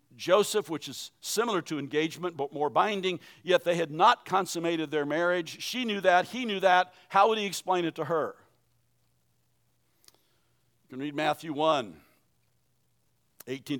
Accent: American